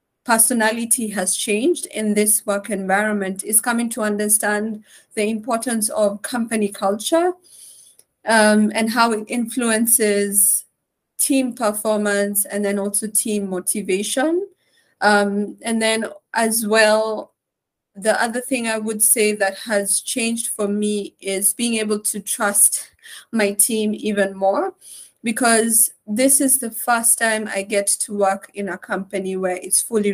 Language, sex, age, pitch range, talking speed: English, female, 30-49, 205-230 Hz, 135 wpm